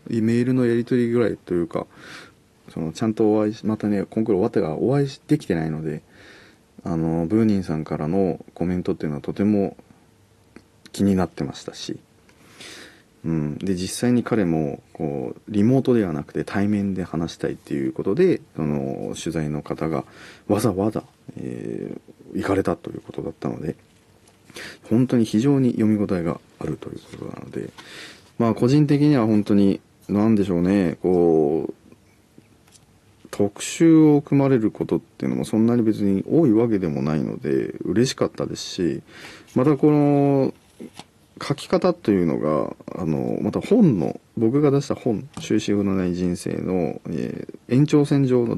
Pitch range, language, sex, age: 85-120 Hz, Japanese, male, 40-59